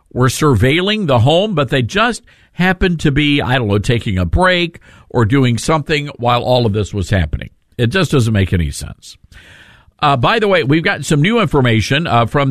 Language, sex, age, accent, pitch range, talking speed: English, male, 50-69, American, 115-160 Hz, 200 wpm